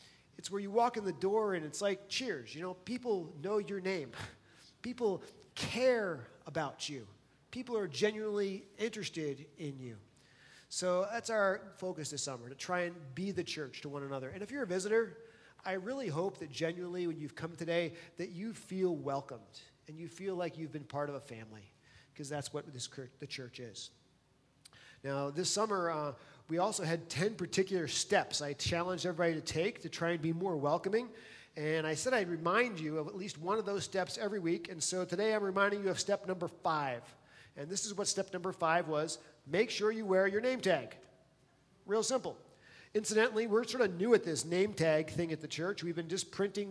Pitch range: 155-205 Hz